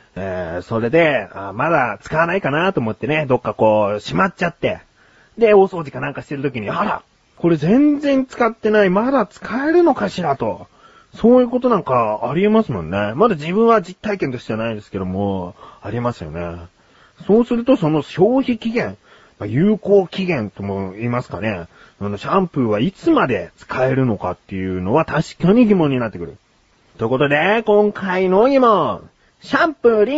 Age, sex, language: 30-49, male, Japanese